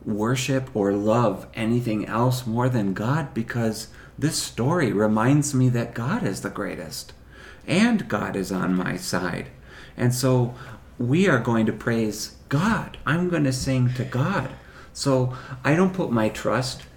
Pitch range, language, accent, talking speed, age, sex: 105-135 Hz, English, American, 155 wpm, 40-59, male